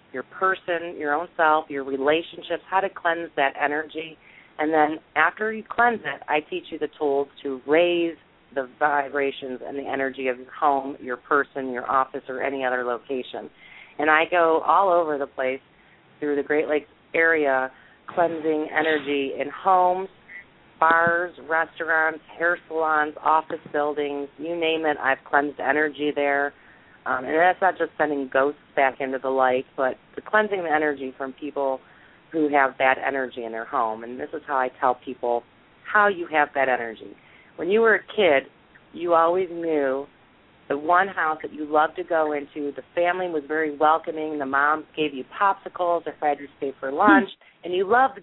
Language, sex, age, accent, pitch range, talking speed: English, female, 30-49, American, 135-165 Hz, 180 wpm